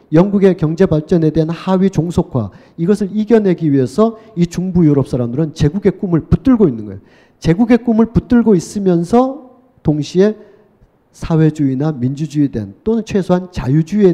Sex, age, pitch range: male, 40-59, 130-195 Hz